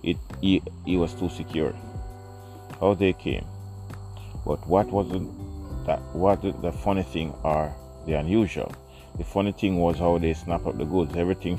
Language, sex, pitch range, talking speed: English, male, 75-100 Hz, 165 wpm